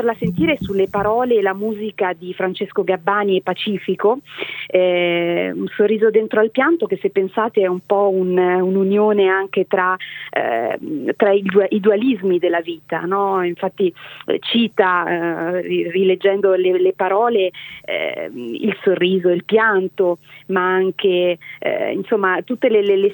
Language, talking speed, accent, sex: Italian, 150 wpm, native, female